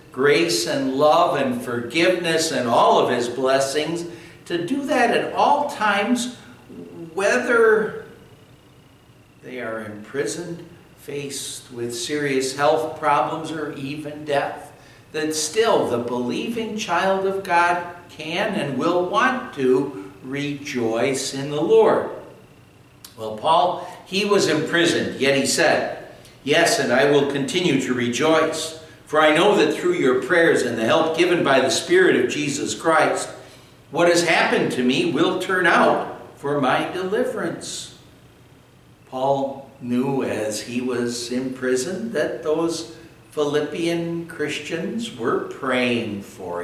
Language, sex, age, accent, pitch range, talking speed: English, male, 60-79, American, 135-175 Hz, 130 wpm